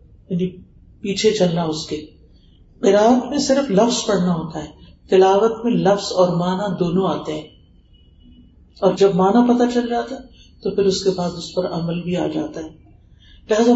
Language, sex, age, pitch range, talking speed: Urdu, female, 50-69, 175-215 Hz, 175 wpm